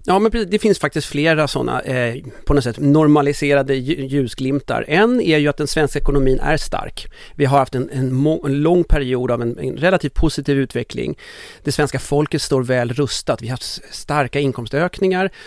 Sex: male